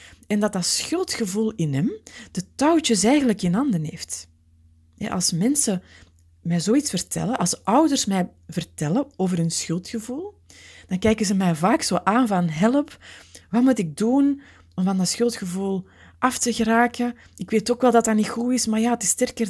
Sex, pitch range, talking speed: female, 170-245 Hz, 180 wpm